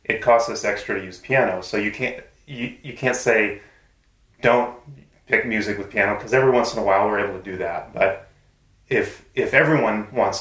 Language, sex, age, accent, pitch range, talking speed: English, male, 30-49, American, 100-120 Hz, 200 wpm